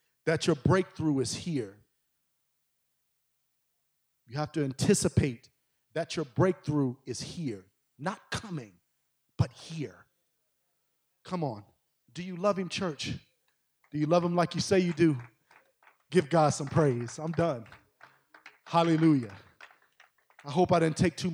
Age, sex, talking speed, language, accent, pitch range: 40-59, male, 130 wpm, English, American, 110-155 Hz